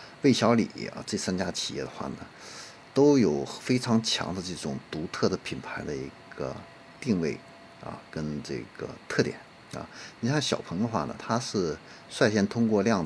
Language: Chinese